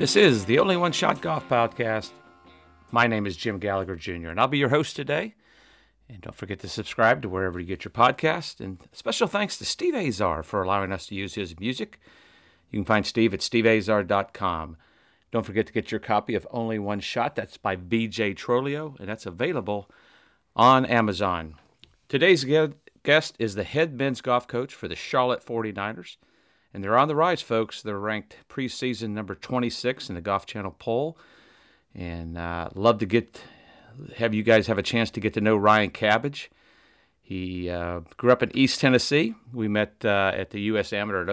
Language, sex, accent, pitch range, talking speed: English, male, American, 95-120 Hz, 185 wpm